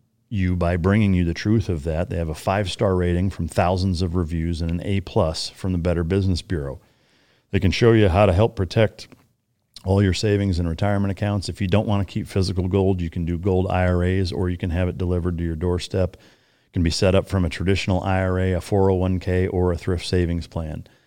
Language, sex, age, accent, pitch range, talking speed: English, male, 40-59, American, 85-100 Hz, 220 wpm